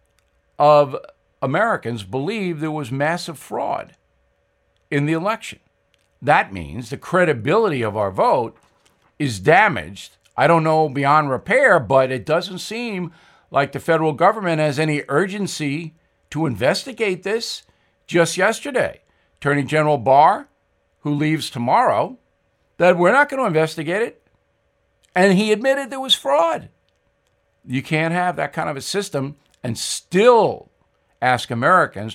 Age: 50-69